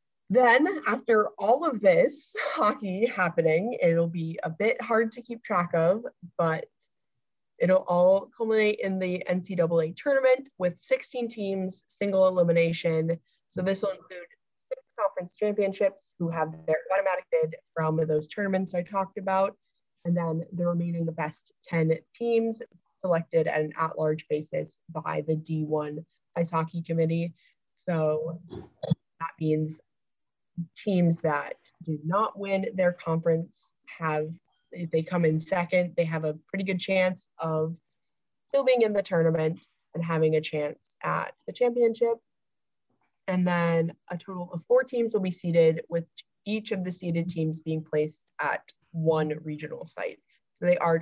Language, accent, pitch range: English, American, 160-195 Hz